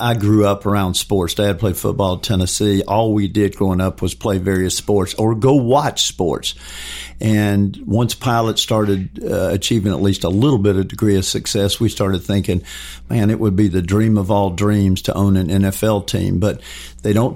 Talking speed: 200 wpm